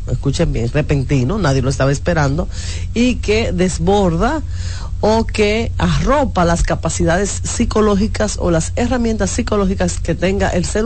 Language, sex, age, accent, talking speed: Spanish, female, 40-59, American, 135 wpm